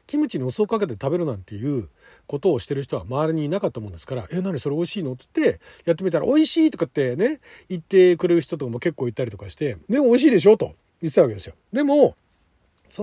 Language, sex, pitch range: Japanese, male, 130-210 Hz